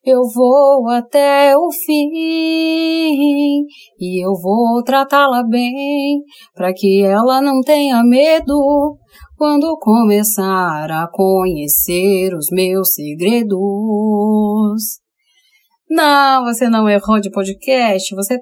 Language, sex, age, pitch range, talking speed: Portuguese, female, 30-49, 210-285 Hz, 100 wpm